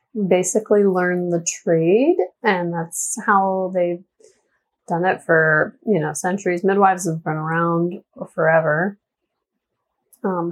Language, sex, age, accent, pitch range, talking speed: English, female, 30-49, American, 170-210 Hz, 115 wpm